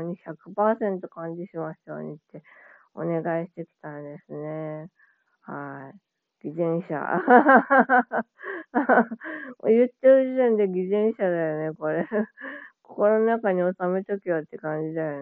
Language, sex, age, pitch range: Japanese, female, 20-39, 155-220 Hz